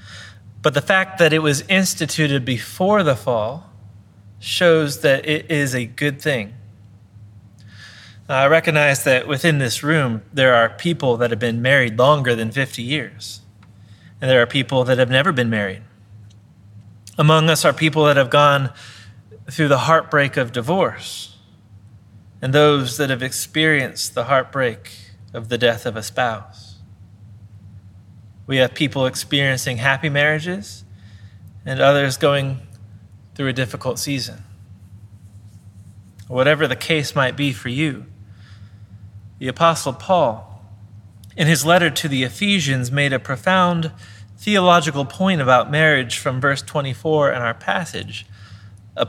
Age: 30-49